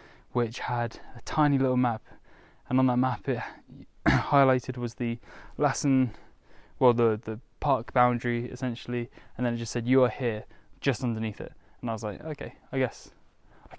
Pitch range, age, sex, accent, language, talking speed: 115-130 Hz, 10-29, male, British, English, 175 wpm